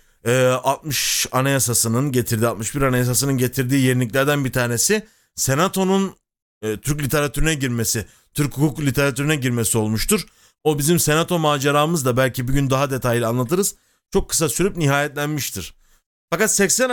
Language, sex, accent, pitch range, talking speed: Turkish, male, native, 130-170 Hz, 130 wpm